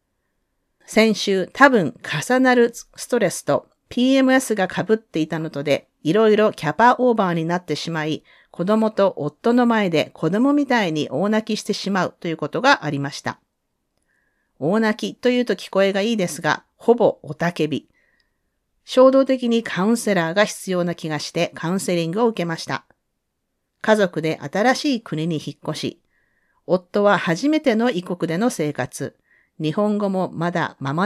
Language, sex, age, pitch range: Japanese, female, 40-59, 165-225 Hz